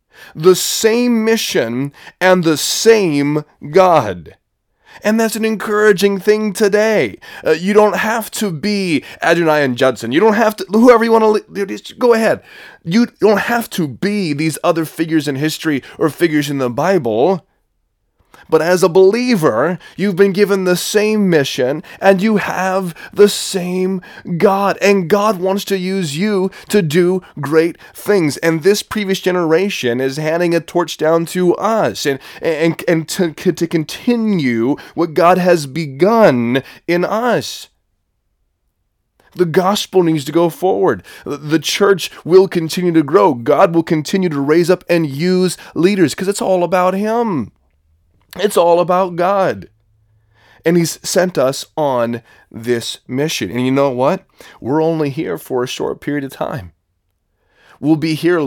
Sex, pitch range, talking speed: male, 145-195 Hz, 150 wpm